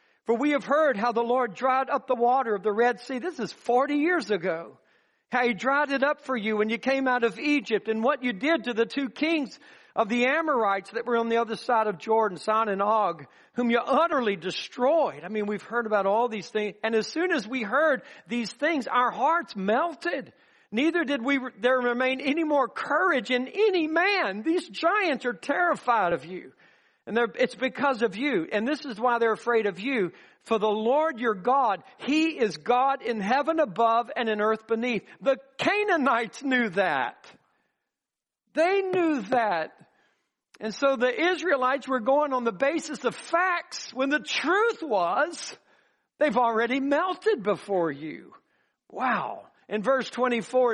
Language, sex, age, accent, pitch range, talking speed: English, male, 50-69, American, 225-295 Hz, 180 wpm